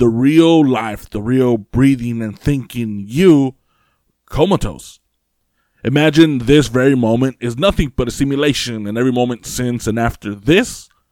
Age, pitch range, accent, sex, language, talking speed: 20-39, 110-145 Hz, American, male, English, 140 wpm